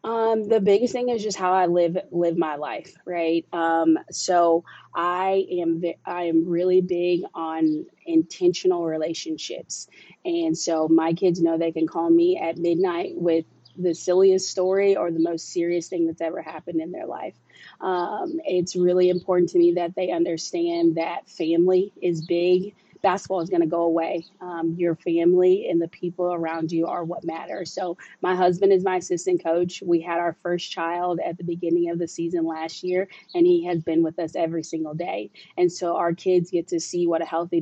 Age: 20-39